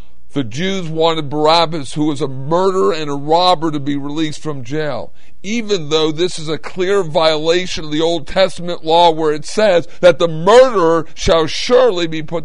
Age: 50-69